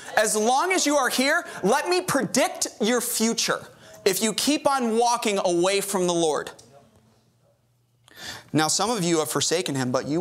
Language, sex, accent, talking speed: English, male, American, 170 wpm